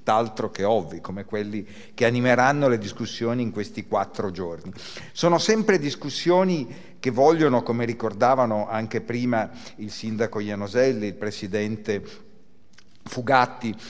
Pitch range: 110-145 Hz